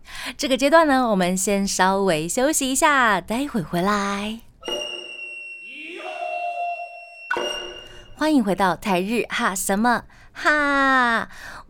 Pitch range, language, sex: 175-265 Hz, Chinese, female